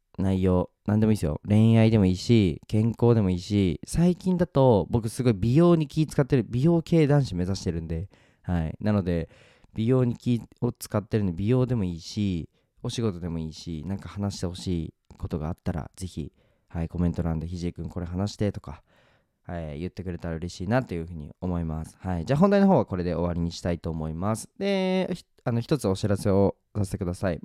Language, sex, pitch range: Japanese, male, 90-120 Hz